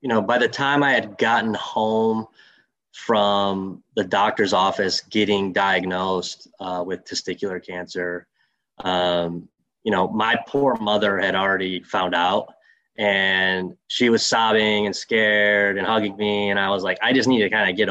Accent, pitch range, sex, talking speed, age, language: American, 95-110 Hz, male, 165 wpm, 20-39, English